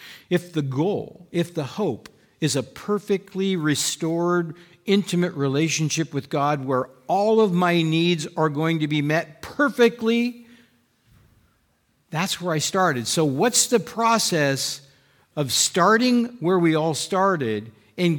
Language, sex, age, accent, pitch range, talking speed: English, male, 50-69, American, 110-165 Hz, 130 wpm